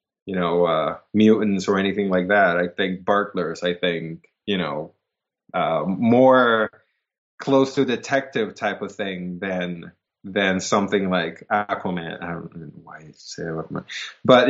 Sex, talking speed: male, 150 wpm